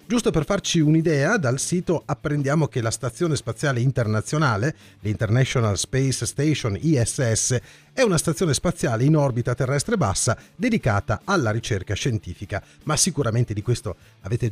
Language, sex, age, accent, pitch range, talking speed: Italian, male, 40-59, native, 115-180 Hz, 135 wpm